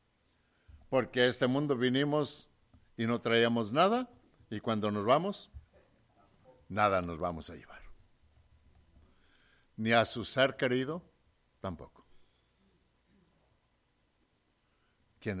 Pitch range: 90-145 Hz